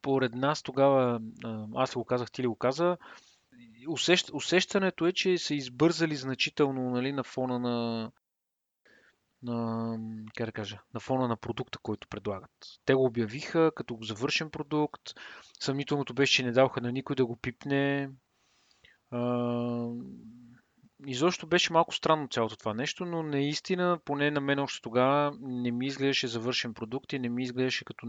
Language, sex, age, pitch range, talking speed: Bulgarian, male, 30-49, 120-145 Hz, 150 wpm